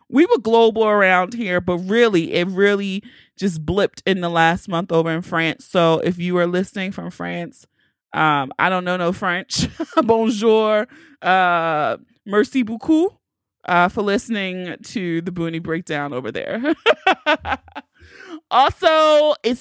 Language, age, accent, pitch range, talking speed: English, 30-49, American, 170-225 Hz, 140 wpm